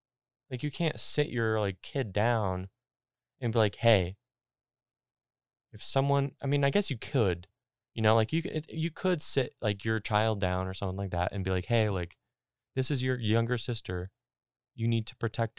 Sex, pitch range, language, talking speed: male, 95-125 Hz, English, 190 wpm